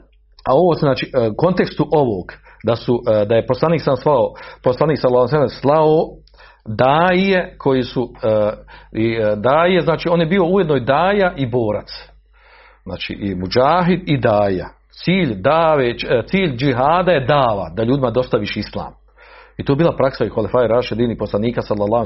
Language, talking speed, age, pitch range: Croatian, 135 wpm, 50-69, 120-170 Hz